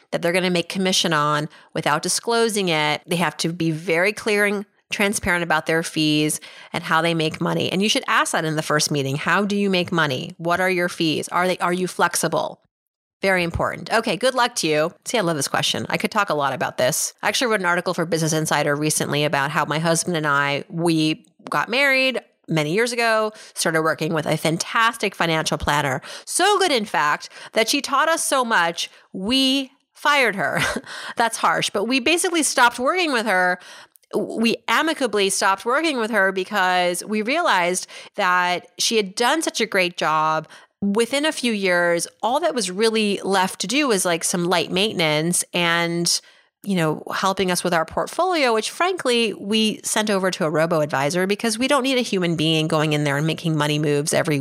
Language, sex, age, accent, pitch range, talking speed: English, female, 30-49, American, 160-225 Hz, 200 wpm